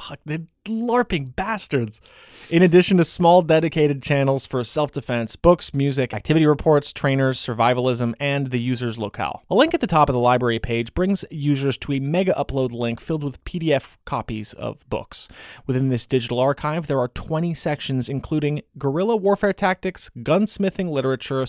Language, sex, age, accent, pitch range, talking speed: English, male, 20-39, American, 125-165 Hz, 160 wpm